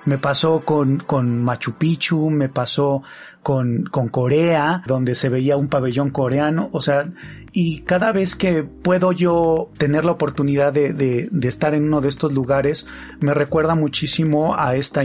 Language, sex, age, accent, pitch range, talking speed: Spanish, male, 40-59, Mexican, 135-160 Hz, 170 wpm